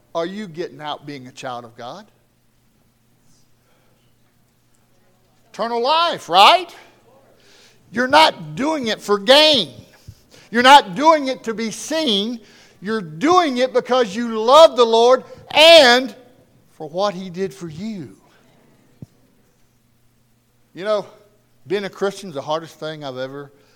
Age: 60-79